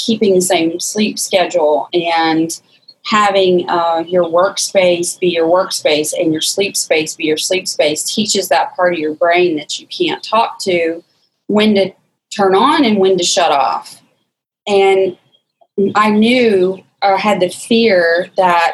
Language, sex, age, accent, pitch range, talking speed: English, female, 30-49, American, 175-215 Hz, 160 wpm